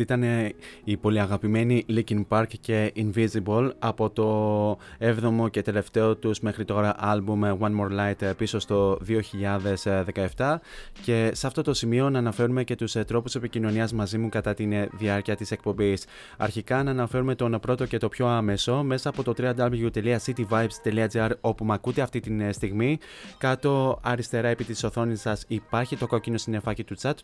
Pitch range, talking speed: 105-120 Hz, 160 wpm